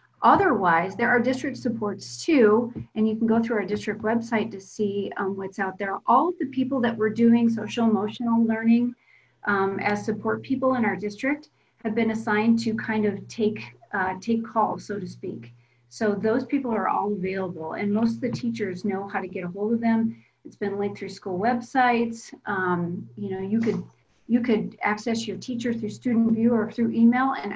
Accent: American